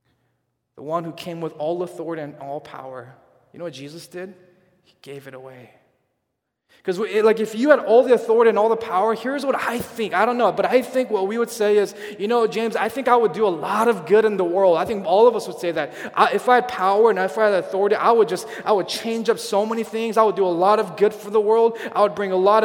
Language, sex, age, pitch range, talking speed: English, male, 20-39, 195-230 Hz, 275 wpm